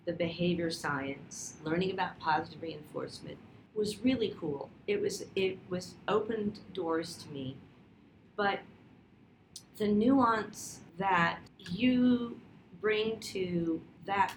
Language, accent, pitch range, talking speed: English, American, 170-210 Hz, 110 wpm